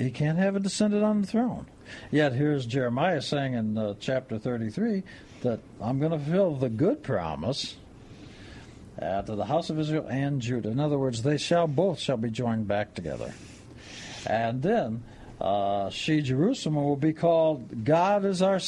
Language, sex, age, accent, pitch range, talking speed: English, male, 60-79, American, 115-170 Hz, 175 wpm